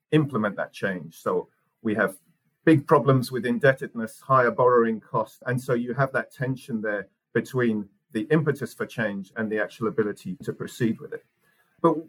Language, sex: English, male